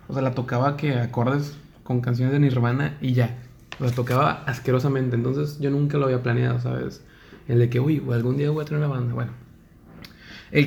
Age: 20-39